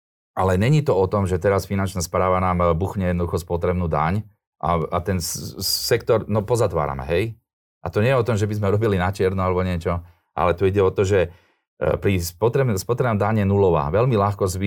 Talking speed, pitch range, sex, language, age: 210 wpm, 90-105 Hz, male, Slovak, 40-59